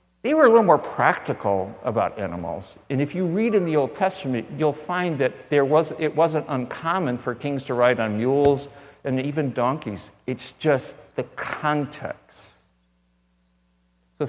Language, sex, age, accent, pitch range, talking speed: English, male, 60-79, American, 95-145 Hz, 160 wpm